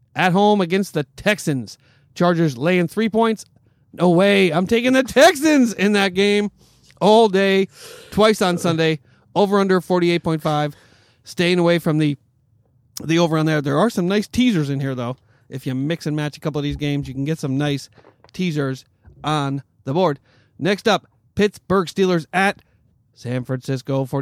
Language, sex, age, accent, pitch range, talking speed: English, male, 40-59, American, 135-180 Hz, 170 wpm